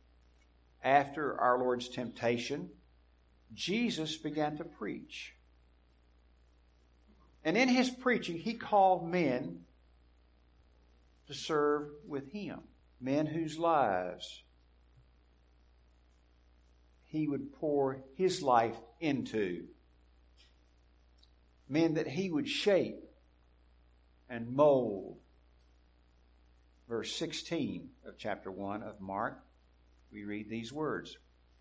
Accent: American